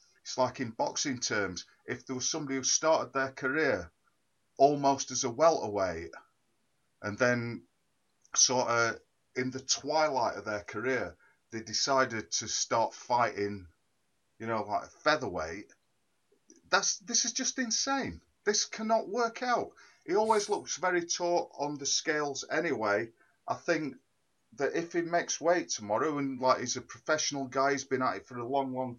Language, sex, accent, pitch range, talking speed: English, male, British, 120-150 Hz, 155 wpm